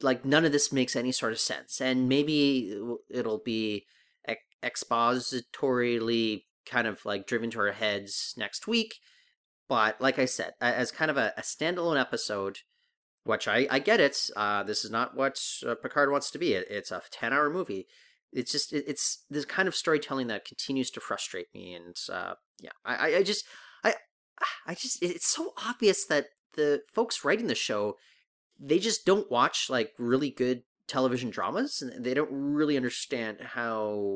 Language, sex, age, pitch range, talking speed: English, male, 30-49, 110-155 Hz, 170 wpm